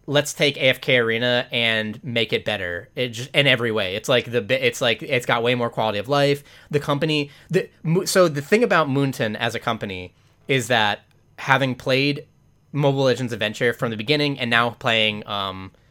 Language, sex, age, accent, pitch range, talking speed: English, male, 20-39, American, 110-140 Hz, 190 wpm